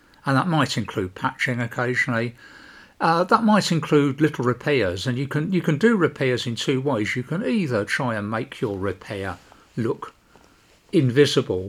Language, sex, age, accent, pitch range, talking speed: English, male, 50-69, British, 100-135 Hz, 165 wpm